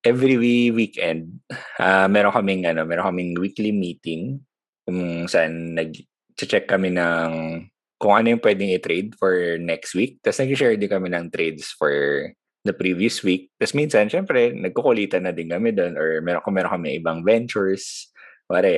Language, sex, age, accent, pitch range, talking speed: Filipino, male, 20-39, native, 85-115 Hz, 145 wpm